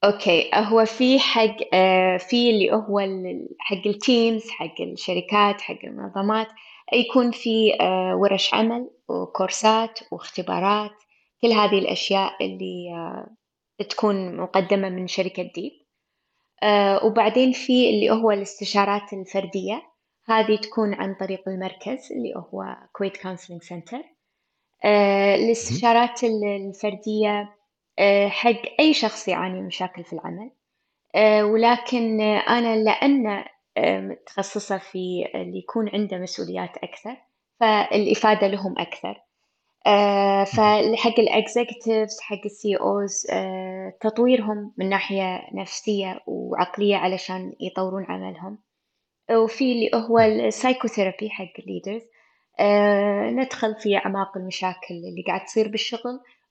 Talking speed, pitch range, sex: 105 wpm, 190-225 Hz, female